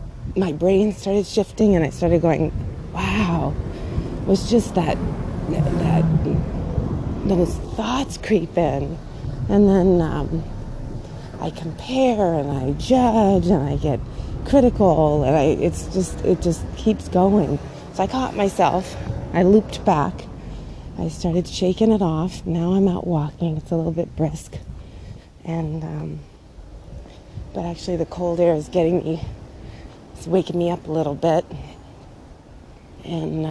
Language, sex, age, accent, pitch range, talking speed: English, female, 30-49, American, 145-195 Hz, 140 wpm